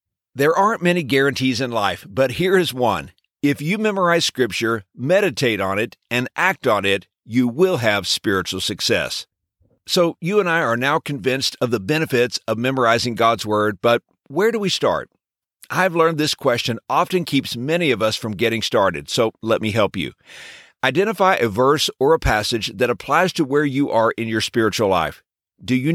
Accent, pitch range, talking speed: American, 115-165 Hz, 185 wpm